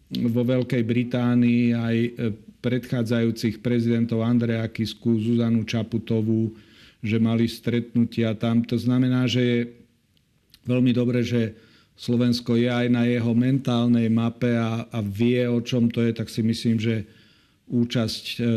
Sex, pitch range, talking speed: male, 110-120 Hz, 130 wpm